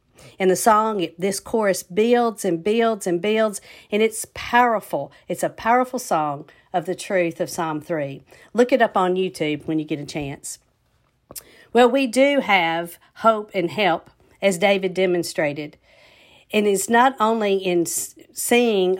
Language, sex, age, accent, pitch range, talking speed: English, female, 50-69, American, 165-205 Hz, 155 wpm